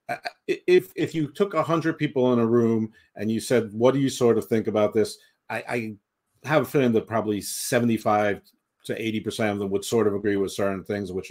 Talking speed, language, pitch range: 220 wpm, English, 100-125 Hz